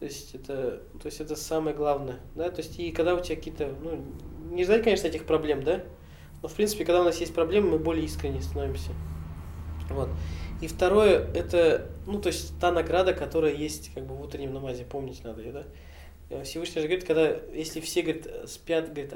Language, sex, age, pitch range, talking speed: Russian, male, 20-39, 125-170 Hz, 200 wpm